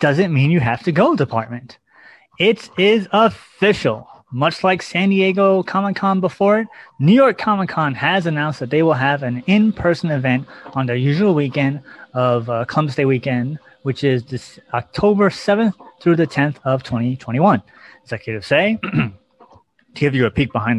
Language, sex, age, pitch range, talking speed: English, male, 30-49, 130-180 Hz, 160 wpm